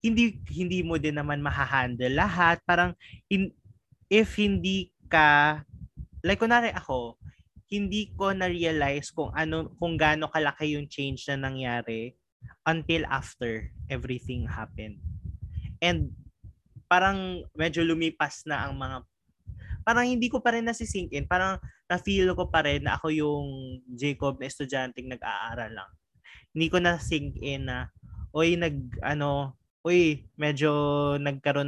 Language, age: Filipino, 20-39